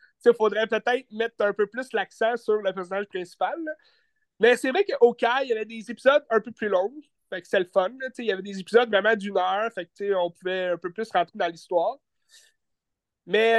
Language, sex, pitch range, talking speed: French, male, 190-250 Hz, 220 wpm